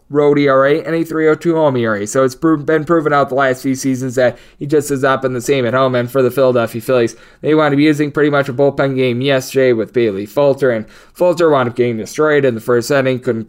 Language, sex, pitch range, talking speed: English, male, 130-150 Hz, 245 wpm